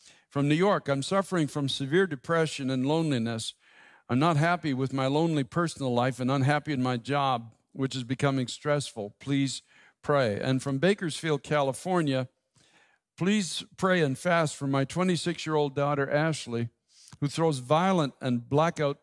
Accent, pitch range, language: American, 130-160 Hz, English